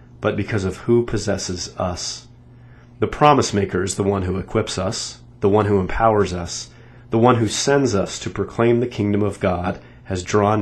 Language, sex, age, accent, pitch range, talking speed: English, male, 40-59, American, 95-120 Hz, 185 wpm